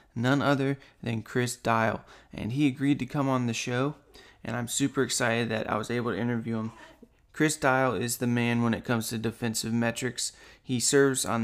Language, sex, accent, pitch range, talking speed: English, male, American, 115-135 Hz, 200 wpm